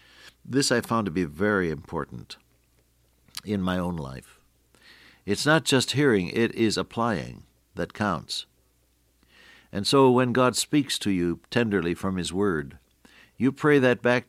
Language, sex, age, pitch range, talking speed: English, male, 60-79, 70-110 Hz, 145 wpm